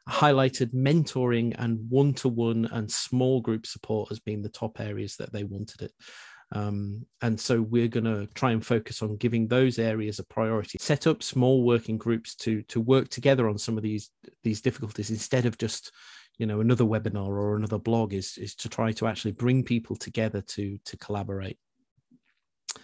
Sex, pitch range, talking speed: male, 110-130 Hz, 180 wpm